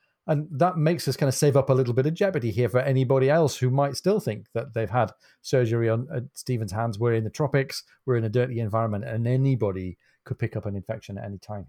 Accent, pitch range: British, 110-135 Hz